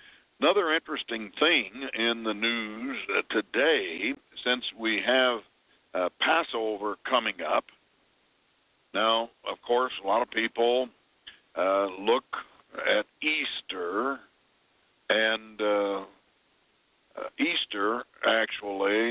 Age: 60-79